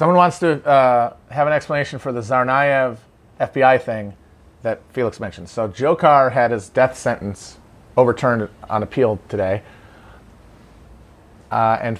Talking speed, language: 135 wpm, English